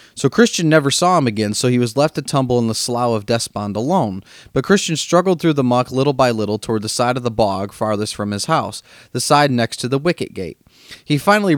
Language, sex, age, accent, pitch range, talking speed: English, male, 30-49, American, 115-155 Hz, 240 wpm